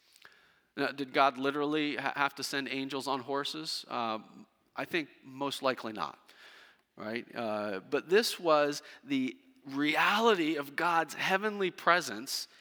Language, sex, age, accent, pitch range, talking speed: English, male, 40-59, American, 130-195 Hz, 135 wpm